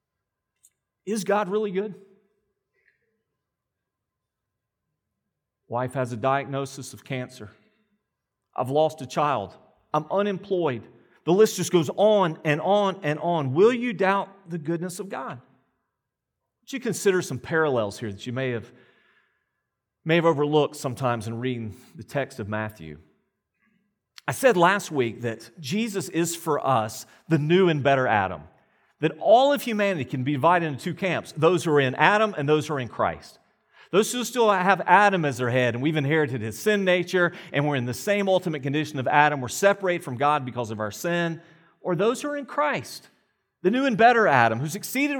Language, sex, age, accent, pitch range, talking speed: English, male, 40-59, American, 135-200 Hz, 175 wpm